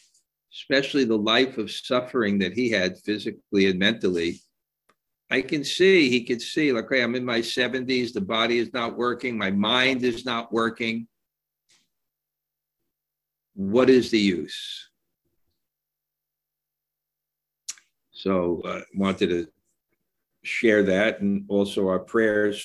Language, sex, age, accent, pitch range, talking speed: English, male, 60-79, American, 95-115 Hz, 125 wpm